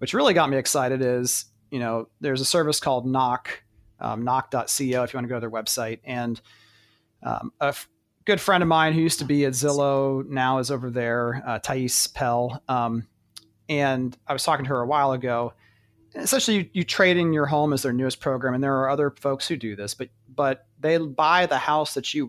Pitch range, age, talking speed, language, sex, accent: 115-150 Hz, 30-49, 220 wpm, English, male, American